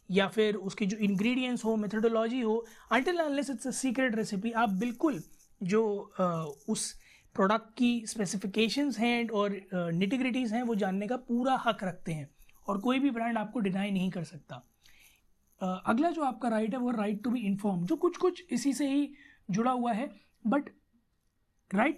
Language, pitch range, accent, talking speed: Hindi, 210-250 Hz, native, 175 wpm